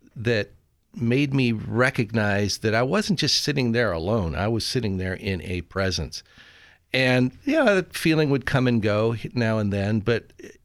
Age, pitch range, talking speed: 50-69, 95-125 Hz, 180 wpm